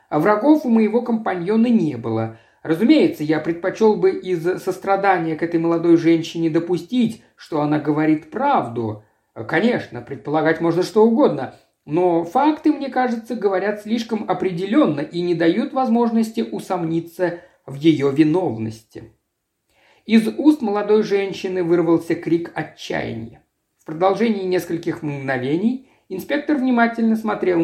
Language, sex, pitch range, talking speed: Russian, male, 155-220 Hz, 120 wpm